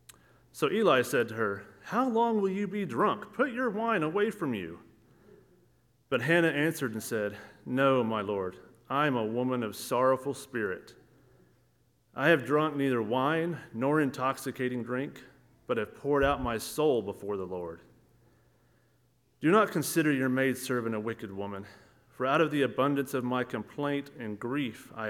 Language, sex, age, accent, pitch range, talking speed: English, male, 30-49, American, 115-140 Hz, 165 wpm